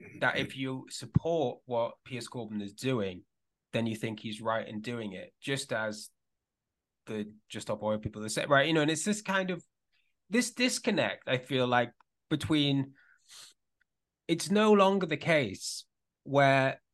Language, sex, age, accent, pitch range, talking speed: English, male, 20-39, British, 110-140 Hz, 165 wpm